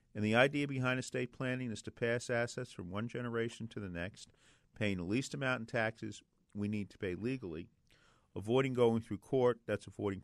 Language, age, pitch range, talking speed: English, 40-59, 100-125 Hz, 195 wpm